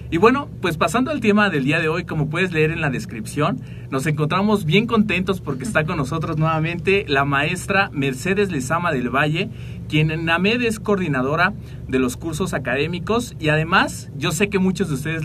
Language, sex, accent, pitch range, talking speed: Spanish, male, Mexican, 130-185 Hz, 190 wpm